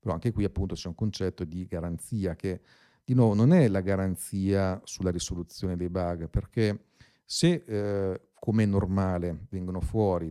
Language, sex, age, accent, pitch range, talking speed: Italian, male, 40-59, native, 85-105 Hz, 165 wpm